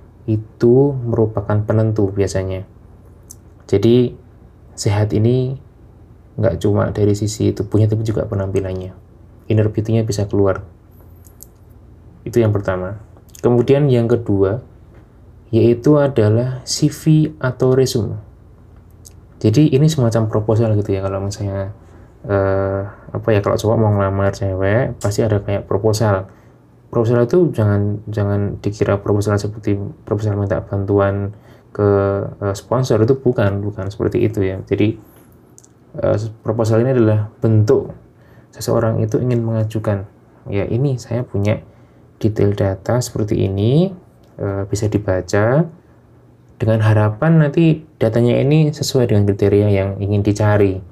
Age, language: 20-39, Indonesian